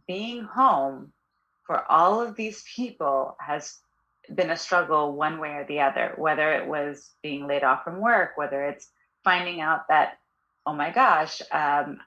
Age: 30-49